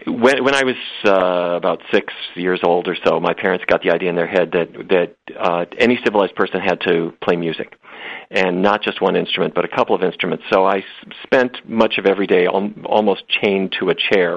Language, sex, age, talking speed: English, male, 40-59, 215 wpm